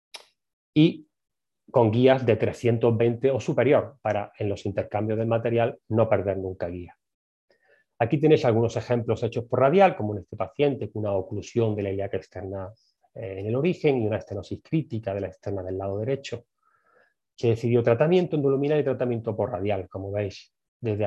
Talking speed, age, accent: 170 wpm, 30-49, Spanish